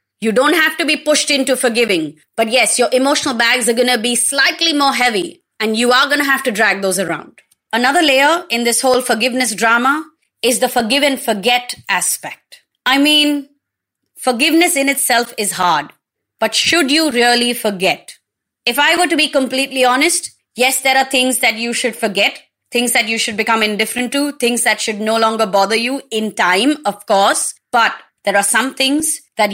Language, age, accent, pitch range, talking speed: English, 30-49, Indian, 215-275 Hz, 190 wpm